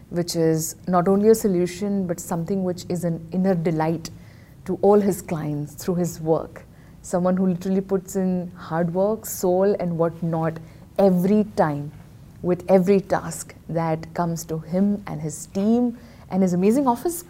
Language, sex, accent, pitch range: English, female, Indian, 175-230 Hz